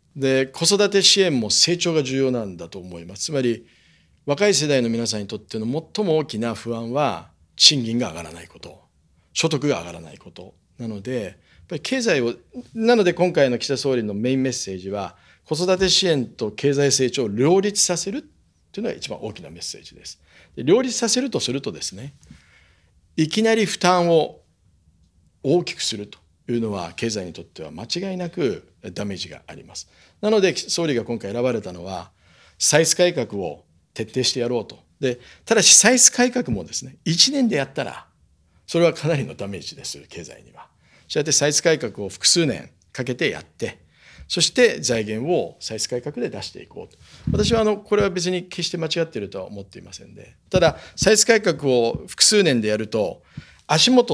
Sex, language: male, Japanese